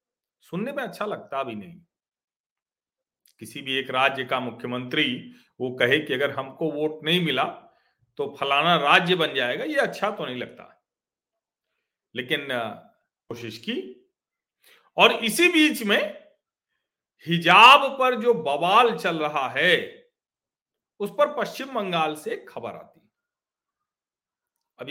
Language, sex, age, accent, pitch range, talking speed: Hindi, male, 40-59, native, 150-225 Hz, 125 wpm